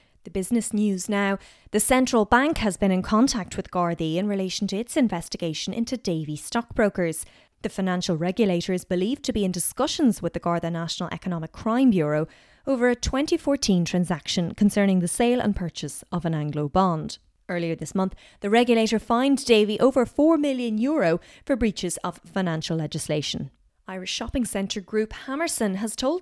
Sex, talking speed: female, 165 wpm